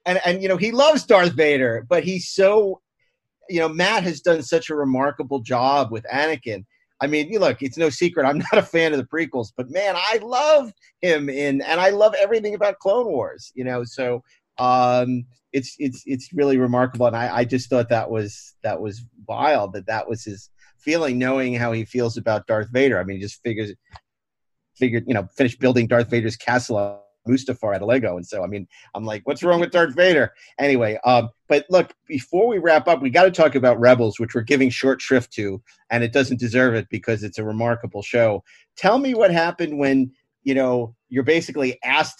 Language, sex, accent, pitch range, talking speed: English, male, American, 120-165 Hz, 210 wpm